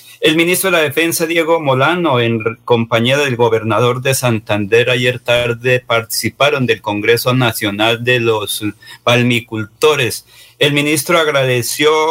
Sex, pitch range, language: male, 120-145 Hz, Spanish